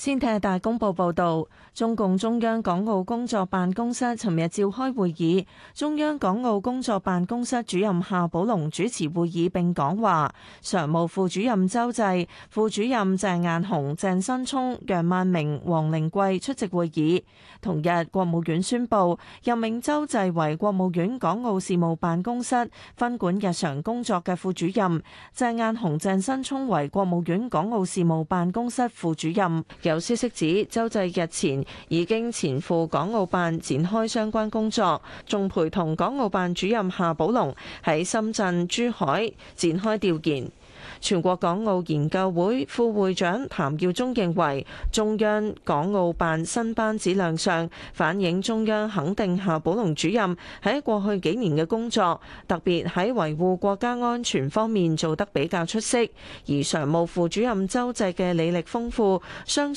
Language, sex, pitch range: Chinese, female, 170-225 Hz